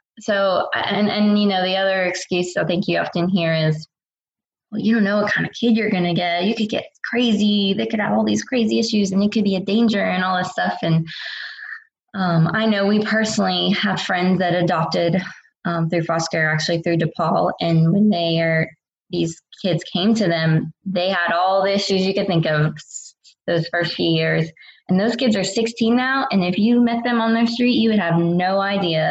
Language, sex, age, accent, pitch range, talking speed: English, female, 20-39, American, 165-210 Hz, 215 wpm